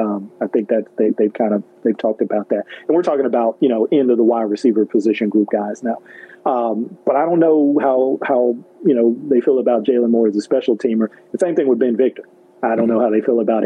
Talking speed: 250 wpm